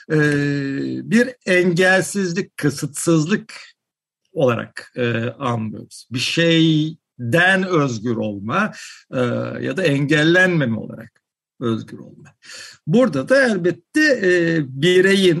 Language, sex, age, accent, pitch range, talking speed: Turkish, male, 60-79, native, 125-190 Hz, 90 wpm